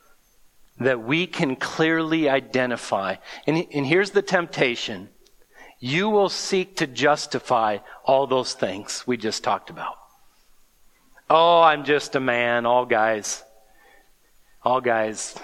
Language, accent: English, American